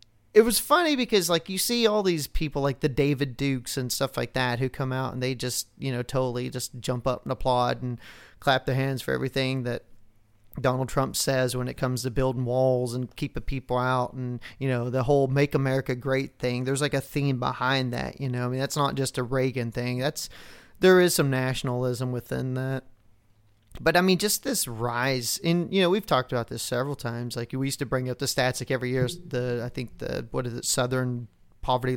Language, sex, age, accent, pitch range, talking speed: English, male, 30-49, American, 125-140 Hz, 225 wpm